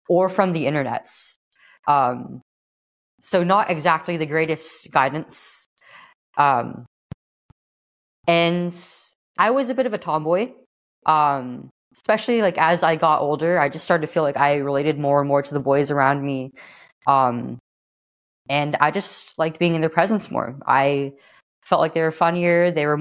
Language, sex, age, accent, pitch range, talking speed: English, female, 20-39, American, 140-170 Hz, 160 wpm